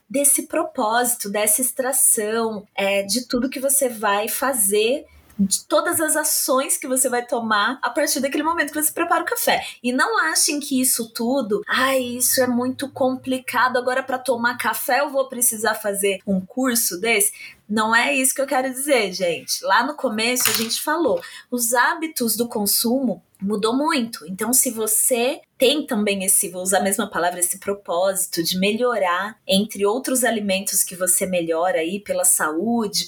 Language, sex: Portuguese, female